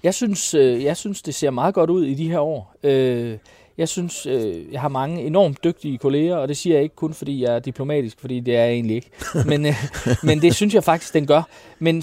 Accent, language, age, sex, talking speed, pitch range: native, Danish, 30-49, male, 250 wpm, 130-175 Hz